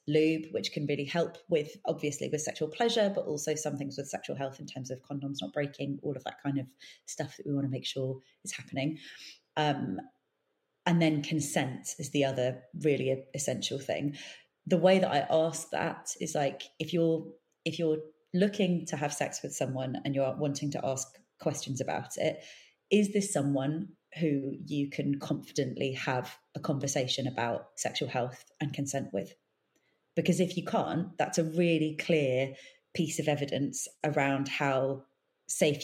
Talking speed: 170 wpm